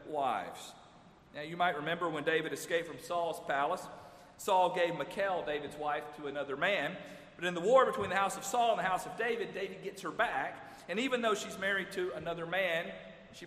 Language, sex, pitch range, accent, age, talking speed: English, male, 140-190 Hz, American, 40-59, 205 wpm